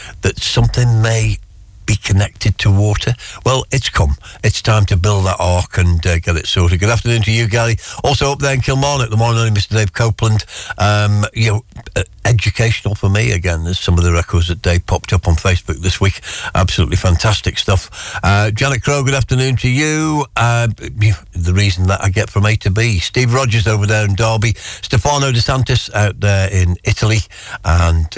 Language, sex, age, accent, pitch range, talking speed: English, male, 60-79, British, 90-110 Hz, 190 wpm